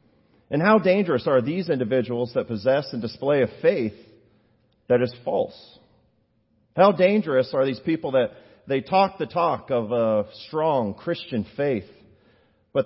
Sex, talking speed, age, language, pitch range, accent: male, 145 wpm, 40-59, English, 110-155 Hz, American